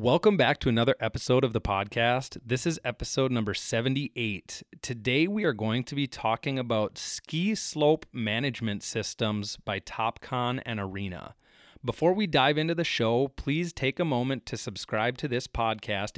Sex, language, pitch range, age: male, English, 110-135 Hz, 30-49